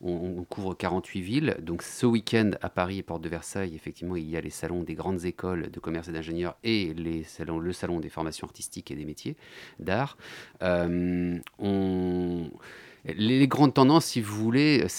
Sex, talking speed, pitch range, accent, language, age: male, 170 wpm, 90-120 Hz, French, French, 30-49